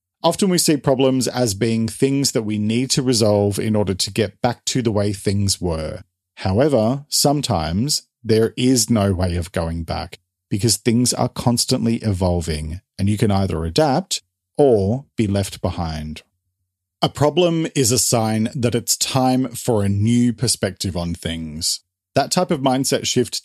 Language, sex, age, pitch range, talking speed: English, male, 40-59, 95-130 Hz, 165 wpm